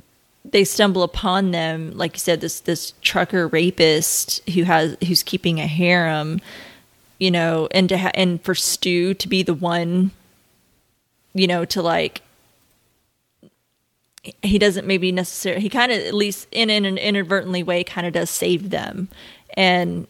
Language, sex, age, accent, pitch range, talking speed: English, female, 20-39, American, 170-190 Hz, 160 wpm